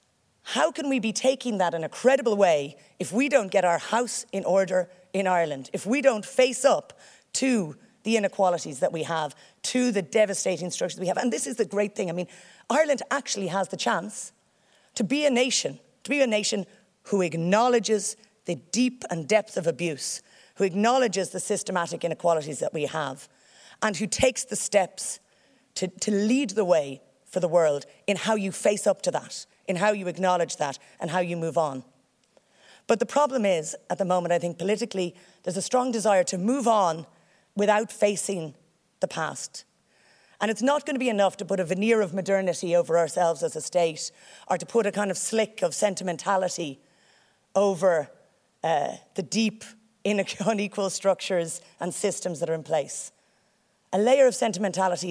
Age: 30-49